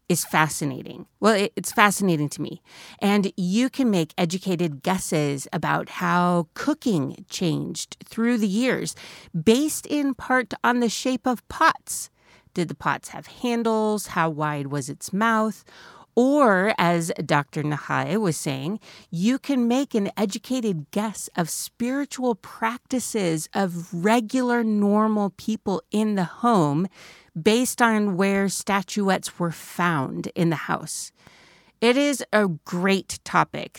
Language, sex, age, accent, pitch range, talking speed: English, female, 40-59, American, 170-230 Hz, 130 wpm